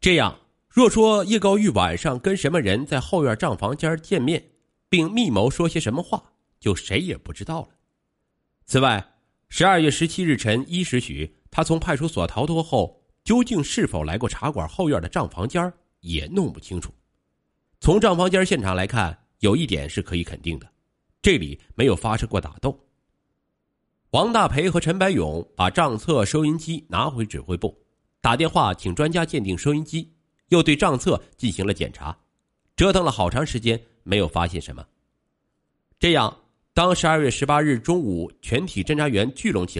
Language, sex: Chinese, male